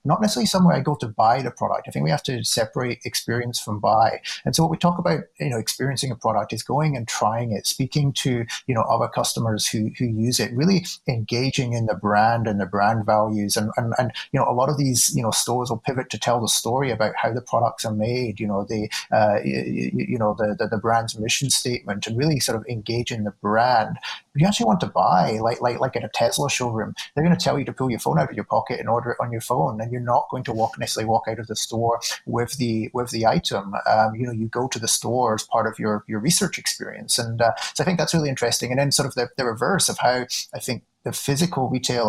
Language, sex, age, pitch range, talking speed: English, male, 30-49, 110-130 Hz, 260 wpm